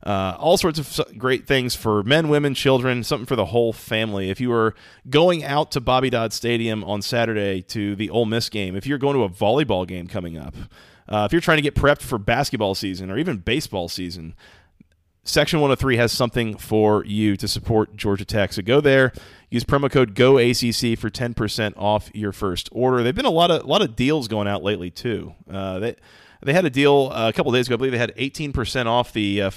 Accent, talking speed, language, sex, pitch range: American, 220 wpm, English, male, 100-125 Hz